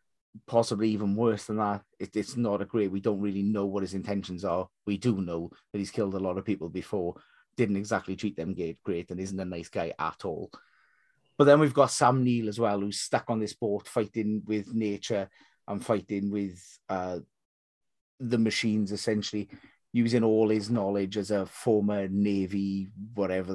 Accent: British